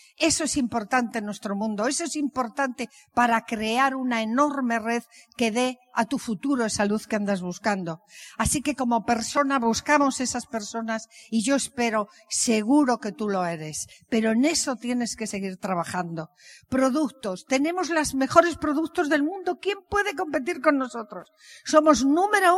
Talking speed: 160 wpm